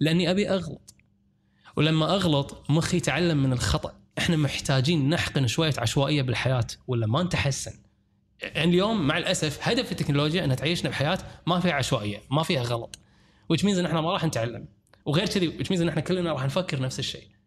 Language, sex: Arabic, male